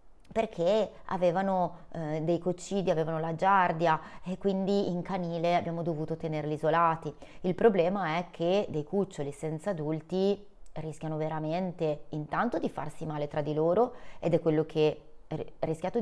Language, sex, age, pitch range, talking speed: Italian, female, 30-49, 150-175 Hz, 145 wpm